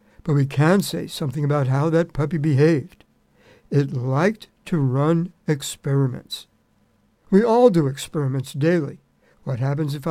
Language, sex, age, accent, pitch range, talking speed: English, male, 60-79, American, 140-170 Hz, 135 wpm